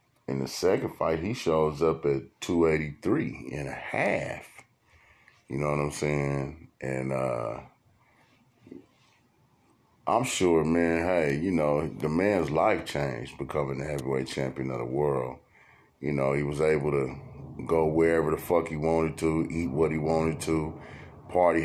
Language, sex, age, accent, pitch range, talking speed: English, male, 30-49, American, 75-85 Hz, 150 wpm